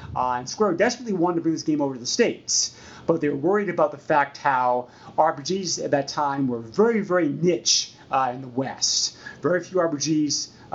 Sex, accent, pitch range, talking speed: male, American, 130-165 Hz, 205 wpm